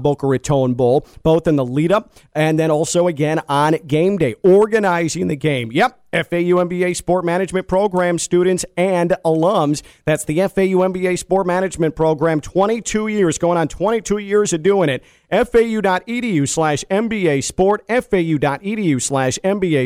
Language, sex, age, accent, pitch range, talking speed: English, male, 40-59, American, 160-205 Hz, 135 wpm